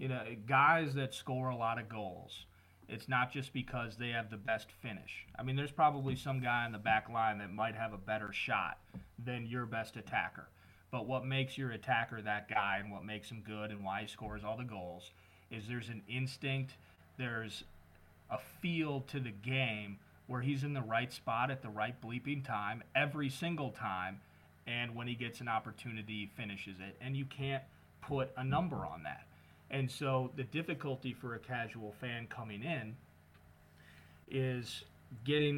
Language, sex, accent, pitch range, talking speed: English, male, American, 100-130 Hz, 185 wpm